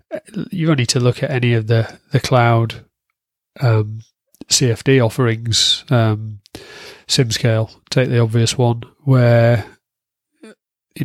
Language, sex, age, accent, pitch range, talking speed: English, male, 30-49, British, 115-130 Hz, 120 wpm